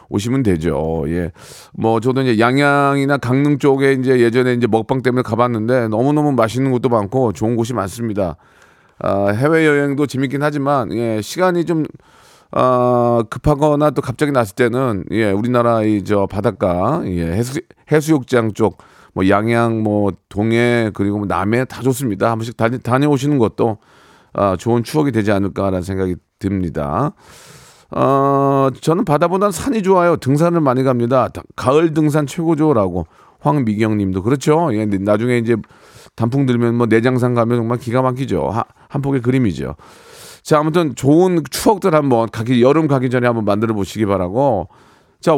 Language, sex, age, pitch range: Korean, male, 40-59, 110-150 Hz